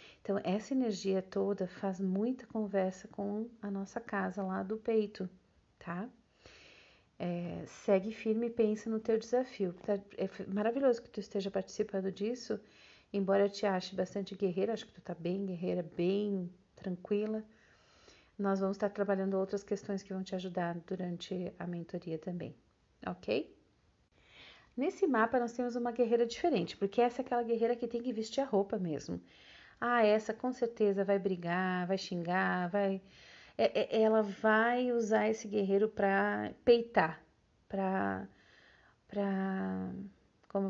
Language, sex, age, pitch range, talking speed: Portuguese, female, 40-59, 185-220 Hz, 140 wpm